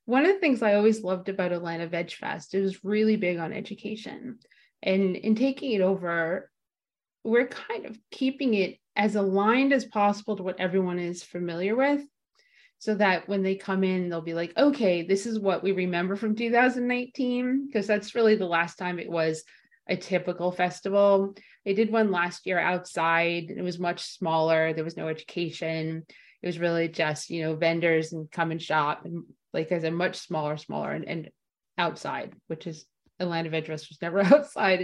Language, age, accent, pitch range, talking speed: English, 30-49, American, 170-215 Hz, 190 wpm